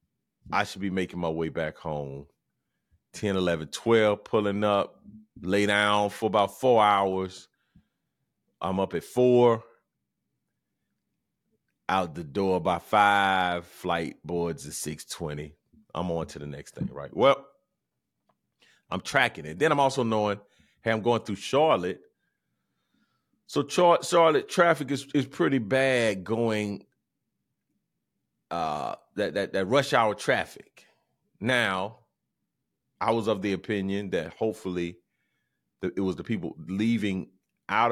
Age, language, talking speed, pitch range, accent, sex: 30-49, English, 130 wpm, 85-115 Hz, American, male